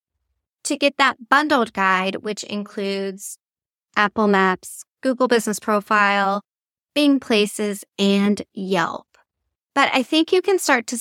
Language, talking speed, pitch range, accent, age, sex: English, 125 wpm, 210-260 Hz, American, 10-29, female